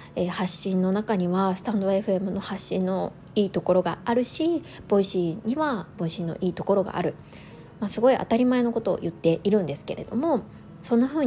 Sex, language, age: female, Japanese, 20-39